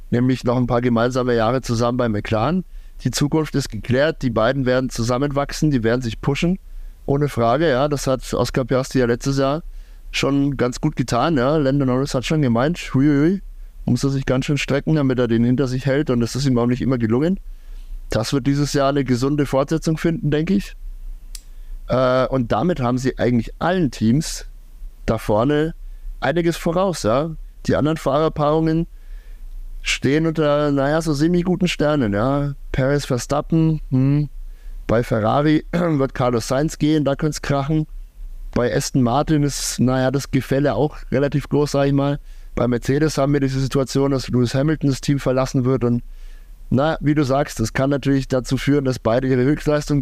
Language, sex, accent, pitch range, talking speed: German, male, German, 125-150 Hz, 180 wpm